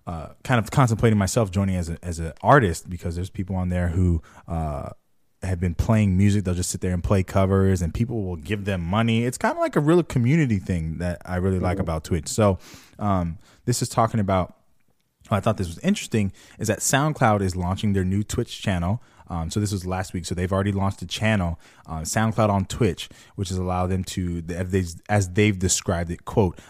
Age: 20-39